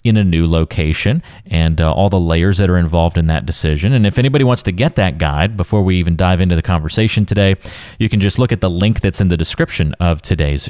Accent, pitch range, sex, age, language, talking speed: American, 85-110 Hz, male, 30-49, English, 245 wpm